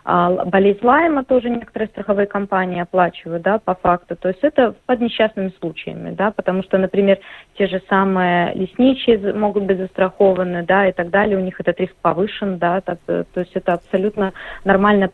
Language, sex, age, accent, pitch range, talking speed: Russian, female, 20-39, native, 185-230 Hz, 165 wpm